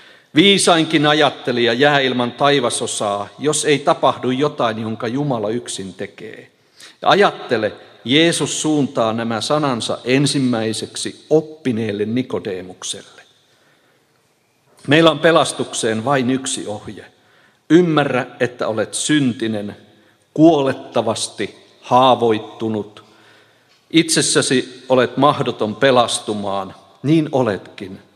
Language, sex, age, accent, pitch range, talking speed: Finnish, male, 50-69, native, 110-145 Hz, 85 wpm